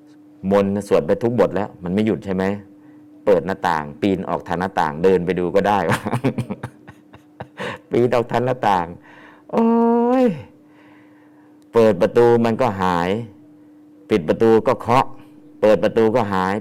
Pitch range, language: 95-135 Hz, Thai